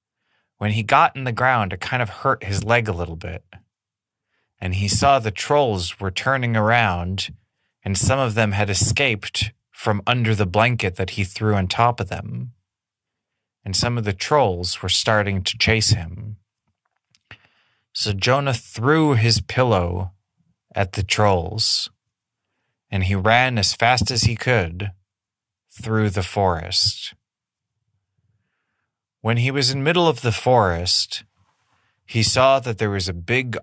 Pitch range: 100-115 Hz